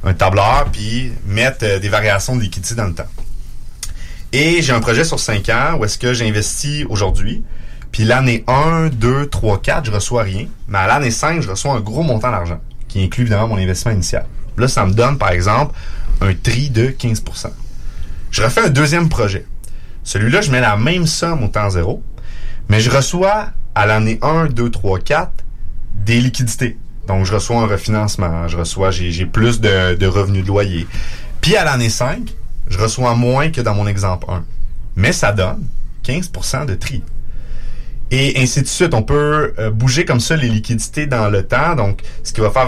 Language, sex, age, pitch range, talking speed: French, male, 30-49, 95-125 Hz, 190 wpm